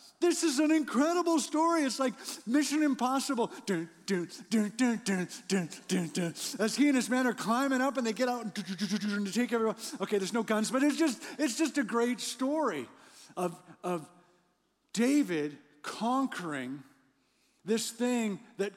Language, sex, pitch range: English, male, 155-240 Hz